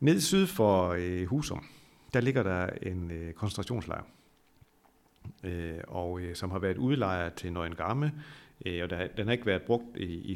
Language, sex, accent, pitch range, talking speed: Danish, male, native, 90-120 Hz, 170 wpm